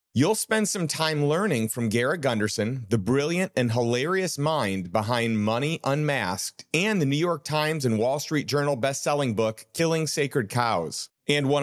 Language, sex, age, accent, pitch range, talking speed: English, male, 40-59, American, 120-170 Hz, 165 wpm